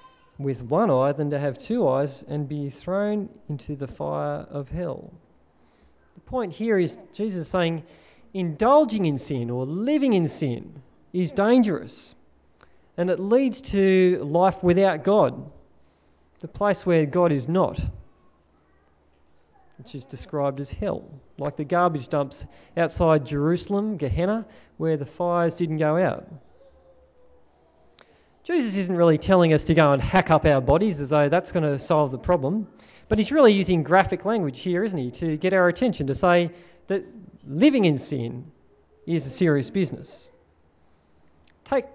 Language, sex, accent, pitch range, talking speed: English, male, Australian, 140-190 Hz, 150 wpm